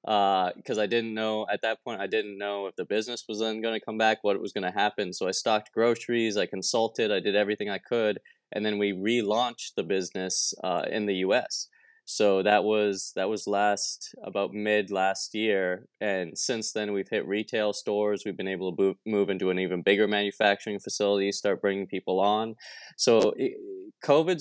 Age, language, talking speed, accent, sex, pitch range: 20-39, English, 200 wpm, American, male, 100-115 Hz